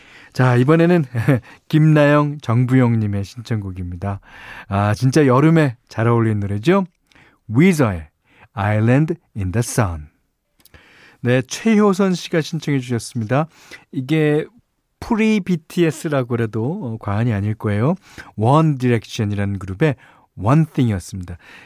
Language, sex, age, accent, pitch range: Korean, male, 40-59, native, 110-155 Hz